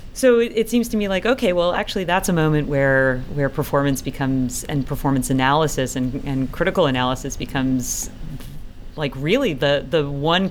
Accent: American